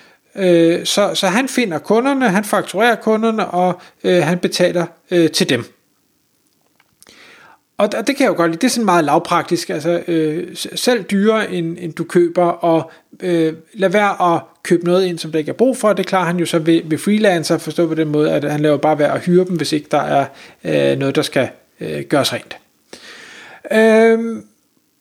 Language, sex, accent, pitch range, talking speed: Danish, male, native, 165-220 Hz, 195 wpm